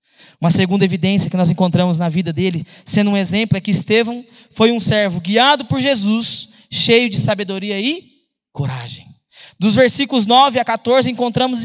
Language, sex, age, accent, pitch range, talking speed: Portuguese, male, 20-39, Brazilian, 195-285 Hz, 165 wpm